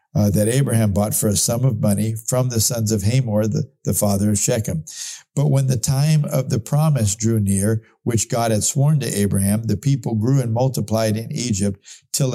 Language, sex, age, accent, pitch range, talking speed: English, male, 50-69, American, 105-135 Hz, 205 wpm